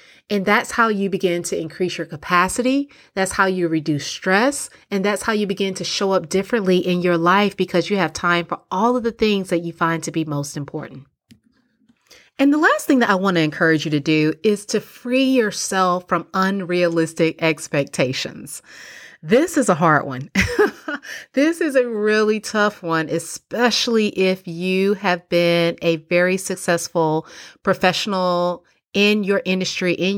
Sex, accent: female, American